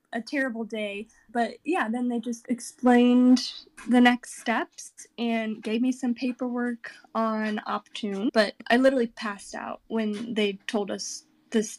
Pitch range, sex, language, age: 215-250 Hz, female, English, 10-29